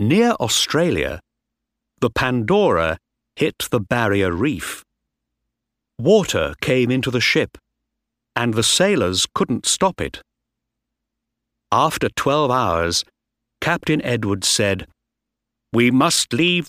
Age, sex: 50-69, male